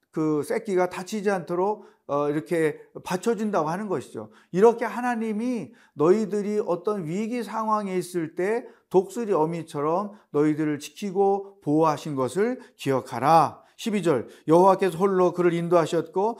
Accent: native